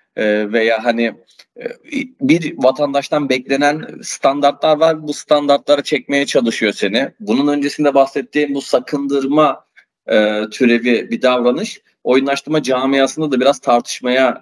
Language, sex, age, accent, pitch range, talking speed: Turkish, male, 30-49, native, 120-145 Hz, 110 wpm